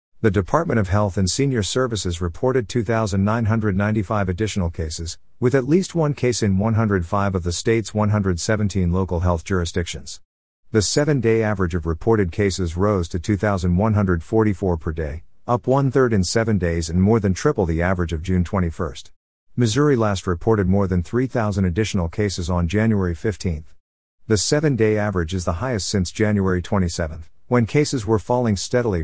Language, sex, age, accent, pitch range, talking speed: English, male, 50-69, American, 90-110 Hz, 155 wpm